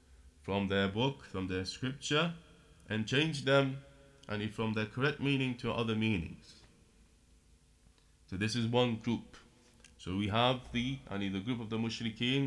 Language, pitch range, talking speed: English, 100-140 Hz, 175 wpm